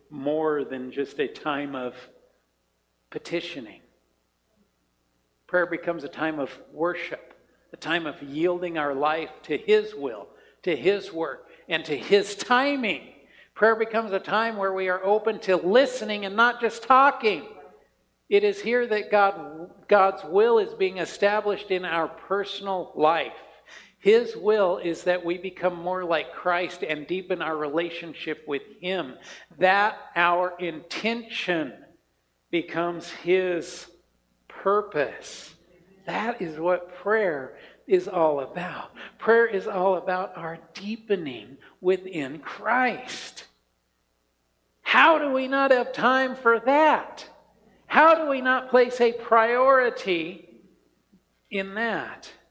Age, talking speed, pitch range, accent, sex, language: 60-79, 125 wpm, 155-230 Hz, American, male, English